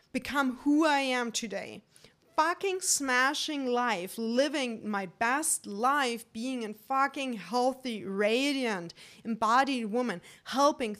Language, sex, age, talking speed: English, female, 30-49, 110 wpm